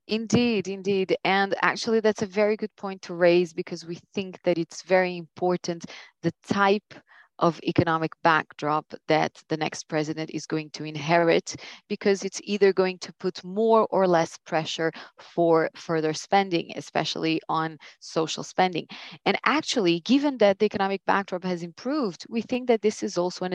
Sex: female